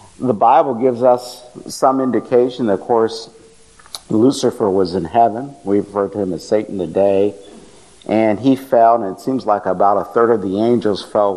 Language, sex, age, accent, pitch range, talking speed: English, male, 50-69, American, 100-130 Hz, 175 wpm